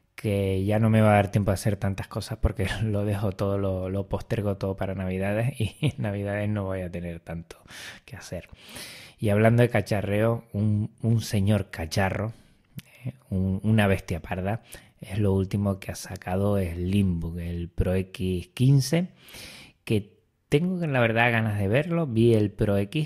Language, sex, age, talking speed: Spanish, male, 20-39, 170 wpm